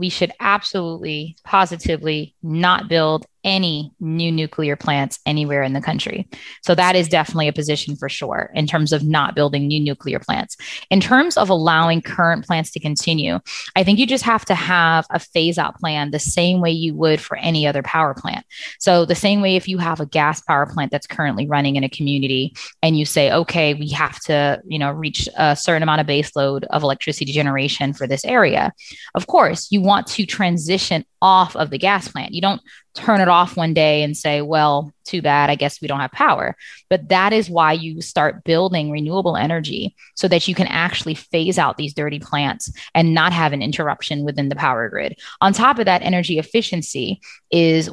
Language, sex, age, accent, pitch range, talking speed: English, female, 20-39, American, 150-185 Hz, 205 wpm